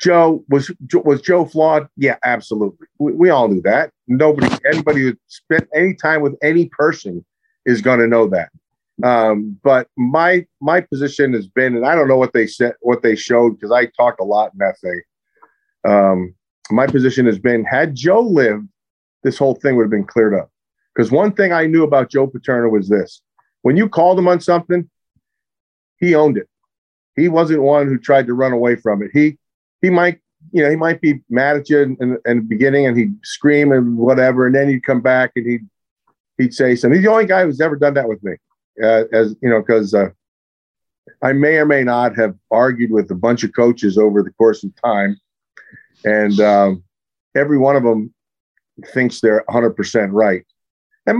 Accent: American